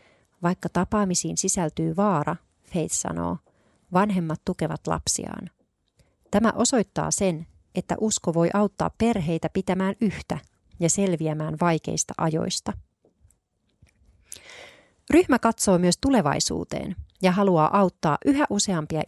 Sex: female